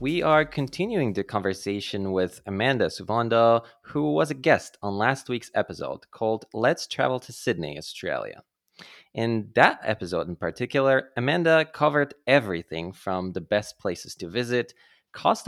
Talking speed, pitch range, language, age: 145 wpm, 100-140 Hz, English, 20-39